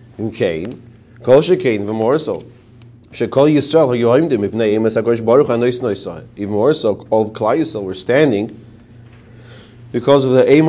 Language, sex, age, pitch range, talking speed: English, male, 40-59, 110-125 Hz, 65 wpm